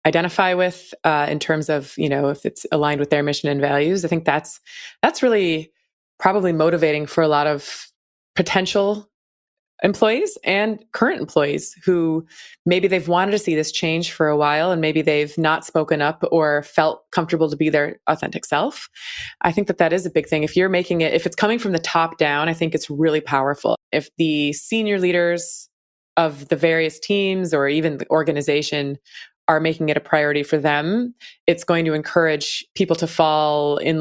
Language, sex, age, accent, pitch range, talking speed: English, female, 20-39, American, 150-175 Hz, 190 wpm